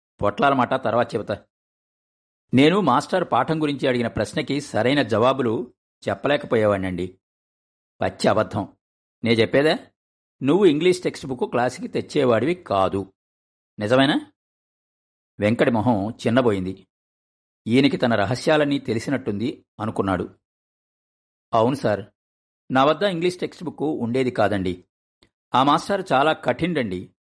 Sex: male